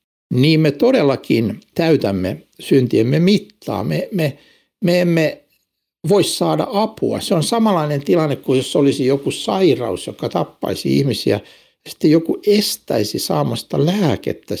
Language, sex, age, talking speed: Finnish, male, 60-79, 125 wpm